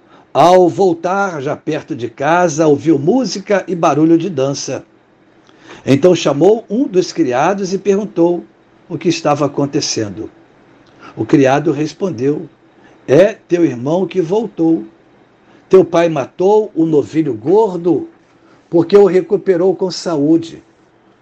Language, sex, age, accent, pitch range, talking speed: Portuguese, male, 60-79, Brazilian, 160-200 Hz, 120 wpm